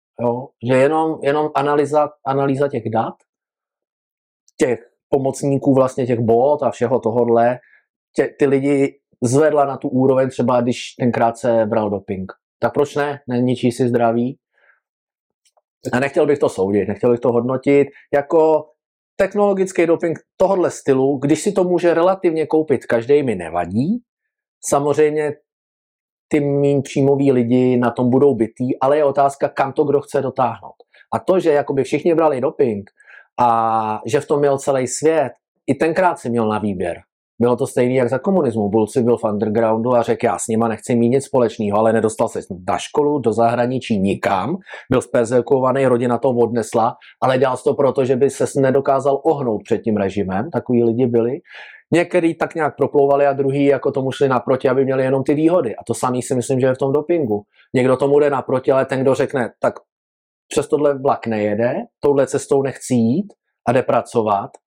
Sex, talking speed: male, 175 wpm